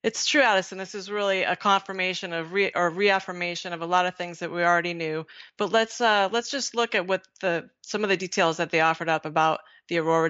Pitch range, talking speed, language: 160-190 Hz, 240 wpm, English